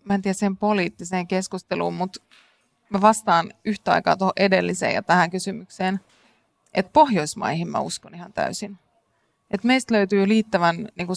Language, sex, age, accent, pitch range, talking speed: Finnish, female, 30-49, native, 180-210 Hz, 145 wpm